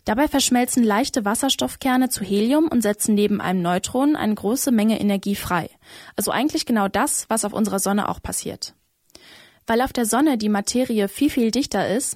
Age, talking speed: 20-39, 180 wpm